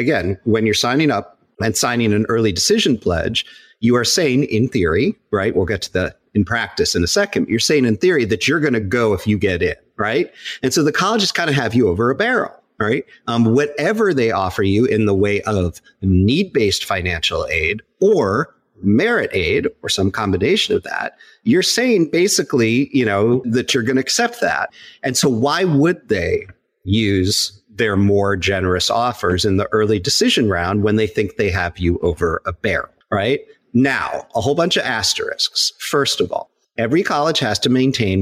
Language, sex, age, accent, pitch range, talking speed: English, male, 40-59, American, 100-170 Hz, 190 wpm